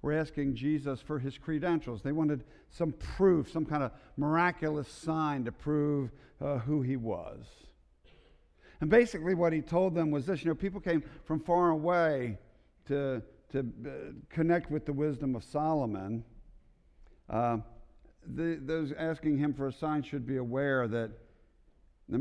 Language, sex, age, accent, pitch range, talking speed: English, male, 50-69, American, 90-145 Hz, 155 wpm